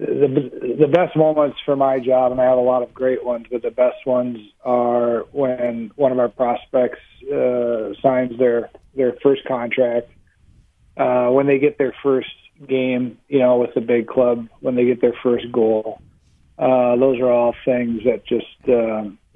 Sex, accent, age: male, American, 40-59